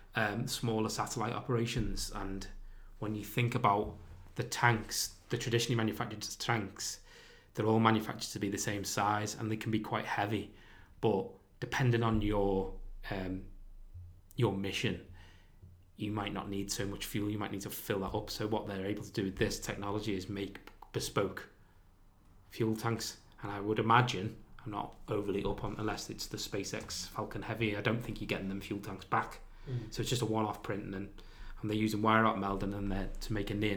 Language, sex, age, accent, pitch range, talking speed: English, male, 20-39, British, 100-110 Hz, 190 wpm